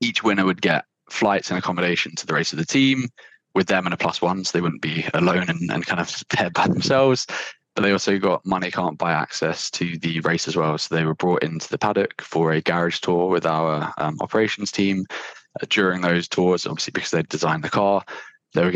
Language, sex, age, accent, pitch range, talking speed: English, male, 20-39, British, 80-95 Hz, 230 wpm